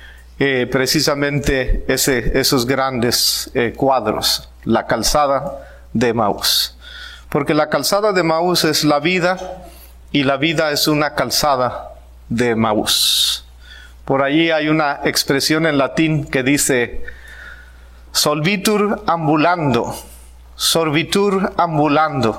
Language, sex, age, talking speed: Spanish, male, 40-59, 105 wpm